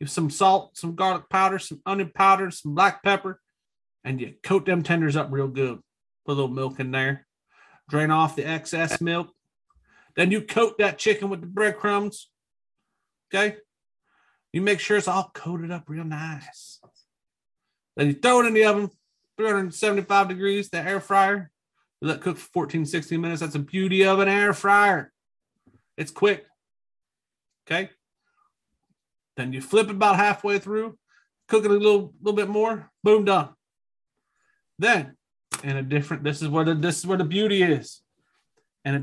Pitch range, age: 145-200 Hz, 40-59